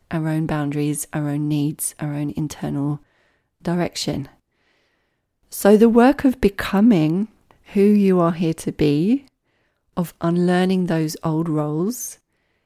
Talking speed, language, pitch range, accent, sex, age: 125 wpm, English, 155-185 Hz, British, female, 30-49